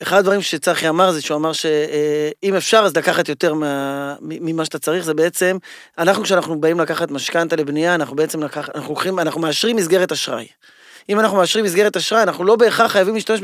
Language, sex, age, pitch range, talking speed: Hebrew, male, 20-39, 160-215 Hz, 195 wpm